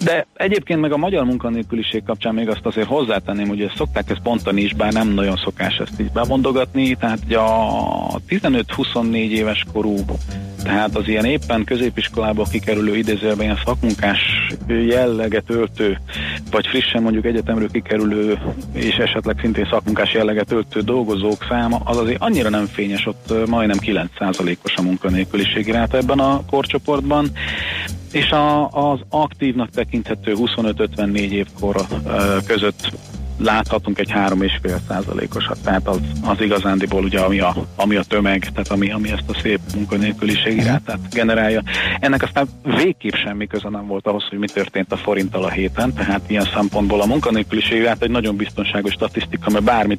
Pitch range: 100-115 Hz